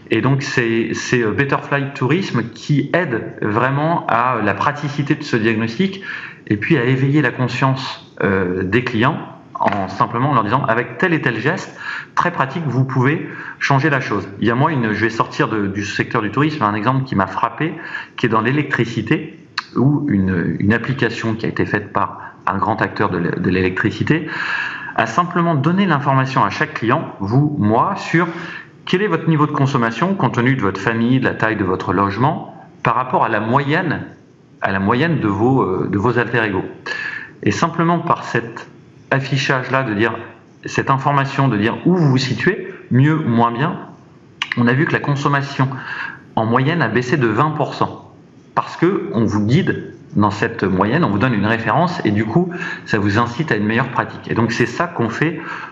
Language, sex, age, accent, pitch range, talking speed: French, male, 30-49, French, 115-150 Hz, 190 wpm